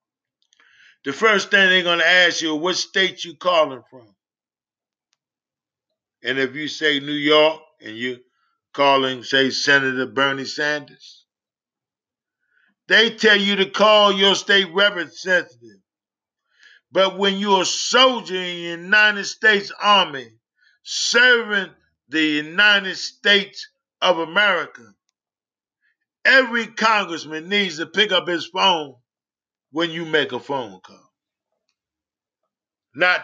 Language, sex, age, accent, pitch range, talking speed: English, male, 50-69, American, 140-200 Hz, 120 wpm